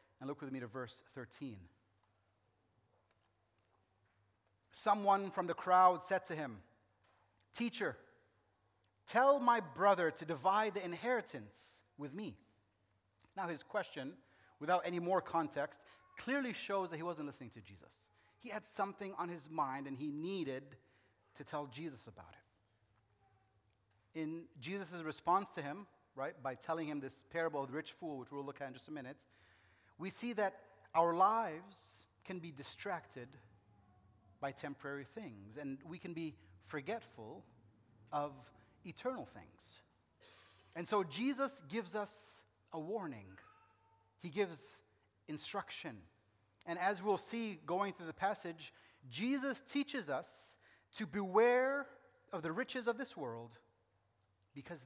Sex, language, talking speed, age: male, English, 135 wpm, 30-49